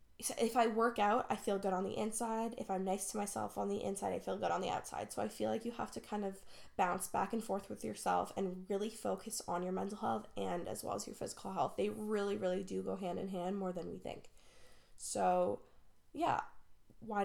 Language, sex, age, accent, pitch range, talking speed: English, female, 10-29, American, 190-225 Hz, 235 wpm